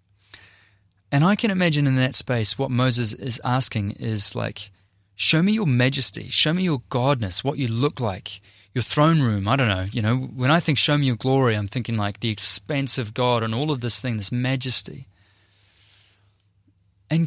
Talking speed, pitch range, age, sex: 190 wpm, 100-135 Hz, 20-39, male